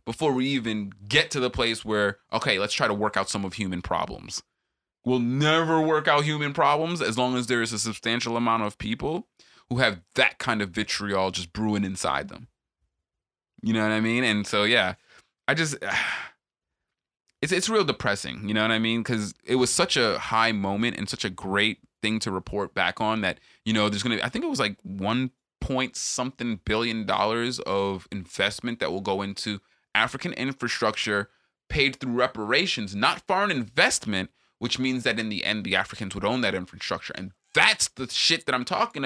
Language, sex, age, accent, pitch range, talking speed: English, male, 20-39, American, 105-135 Hz, 195 wpm